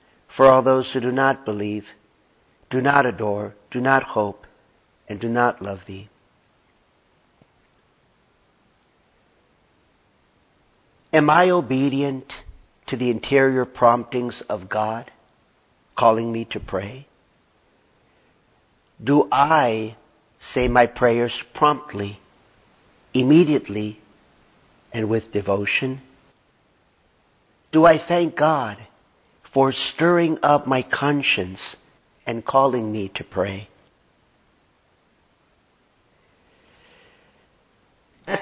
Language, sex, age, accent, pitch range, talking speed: English, male, 50-69, American, 105-140 Hz, 85 wpm